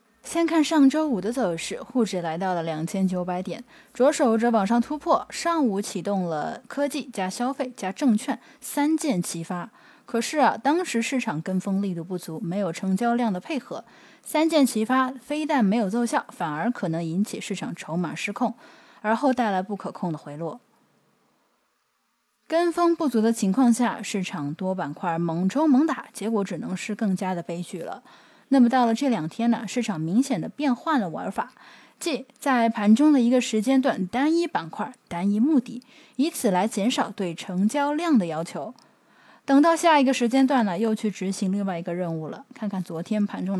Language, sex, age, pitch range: Chinese, female, 10-29, 190-270 Hz